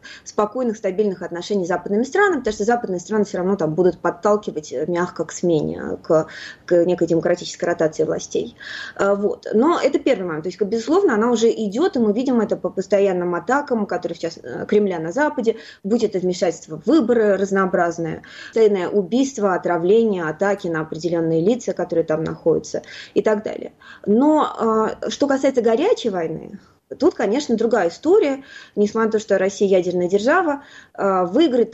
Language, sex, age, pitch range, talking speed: Russian, female, 20-39, 185-240 Hz, 155 wpm